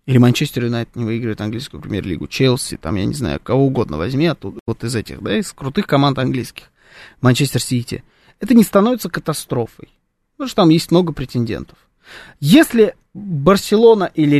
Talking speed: 160 wpm